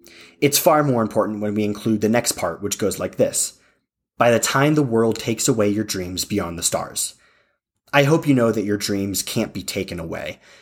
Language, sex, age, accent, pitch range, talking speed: English, male, 30-49, American, 95-120 Hz, 210 wpm